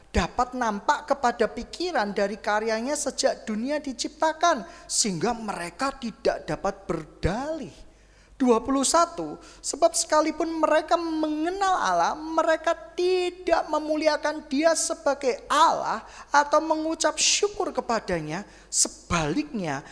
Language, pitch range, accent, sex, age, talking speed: Indonesian, 240-320 Hz, native, male, 20-39, 95 wpm